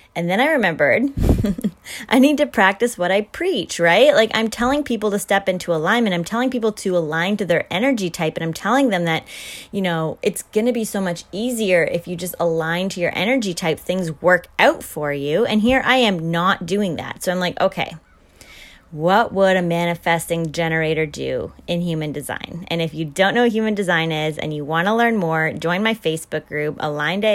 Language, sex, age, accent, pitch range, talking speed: English, female, 20-39, American, 165-215 Hz, 210 wpm